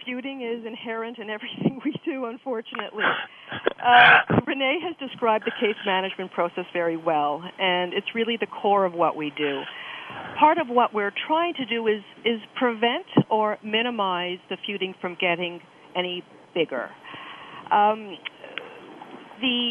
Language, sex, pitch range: English, female, 175-230 Hz